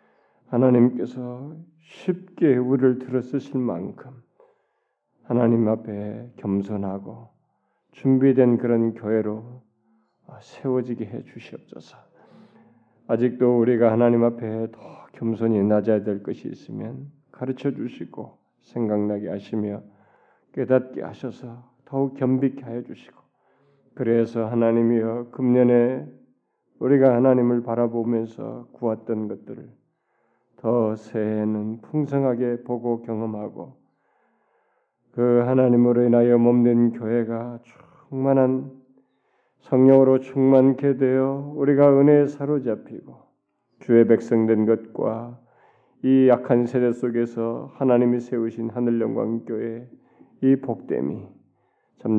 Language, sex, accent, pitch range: Korean, male, native, 115-130 Hz